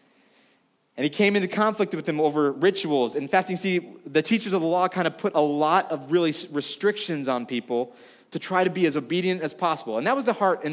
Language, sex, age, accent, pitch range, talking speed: English, male, 30-49, American, 150-185 Hz, 230 wpm